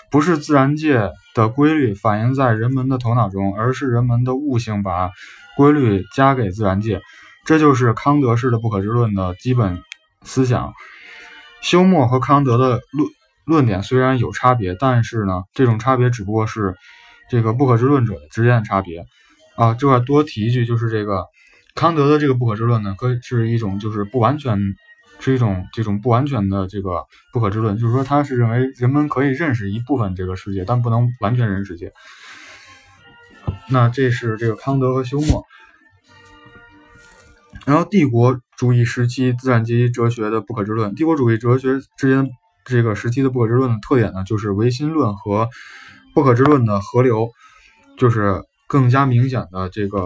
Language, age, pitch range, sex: Chinese, 20-39, 105-135 Hz, male